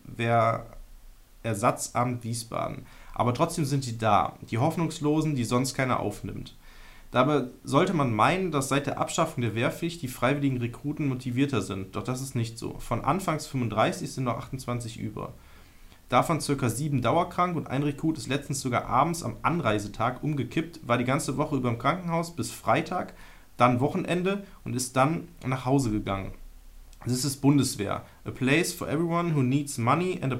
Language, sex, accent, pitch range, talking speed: German, male, German, 115-150 Hz, 165 wpm